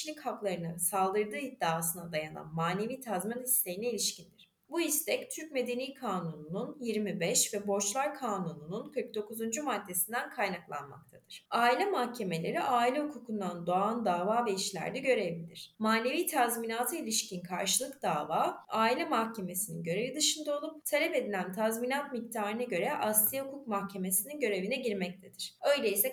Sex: female